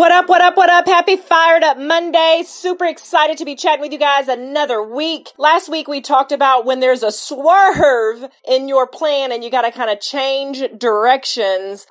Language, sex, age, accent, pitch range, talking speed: English, female, 30-49, American, 230-295 Hz, 200 wpm